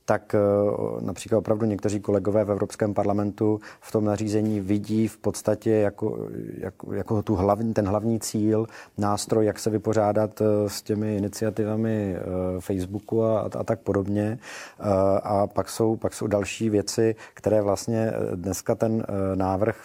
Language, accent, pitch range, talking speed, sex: Czech, native, 100-115 Hz, 140 wpm, male